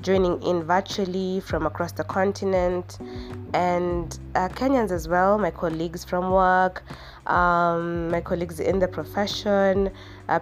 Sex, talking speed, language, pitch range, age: female, 130 wpm, English, 170-195 Hz, 20-39